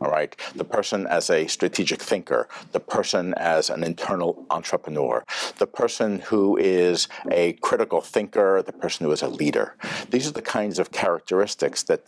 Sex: male